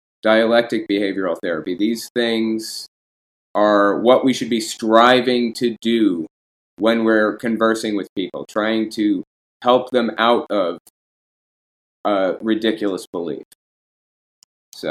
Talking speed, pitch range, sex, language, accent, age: 115 wpm, 100-120 Hz, male, English, American, 30-49